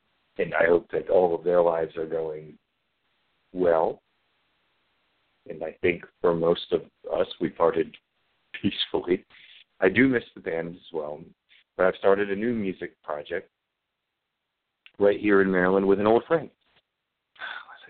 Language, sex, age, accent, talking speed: English, male, 50-69, American, 150 wpm